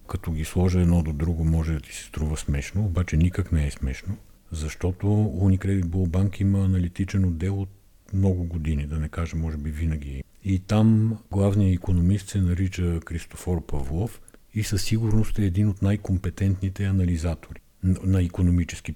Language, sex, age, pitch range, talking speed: Bulgarian, male, 50-69, 80-100 Hz, 160 wpm